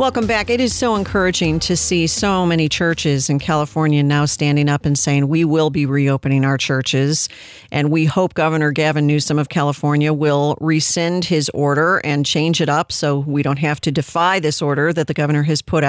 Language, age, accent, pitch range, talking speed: English, 50-69, American, 155-195 Hz, 200 wpm